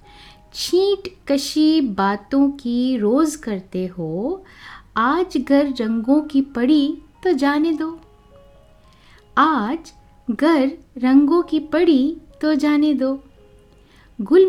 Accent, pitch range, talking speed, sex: native, 225-310 Hz, 100 wpm, female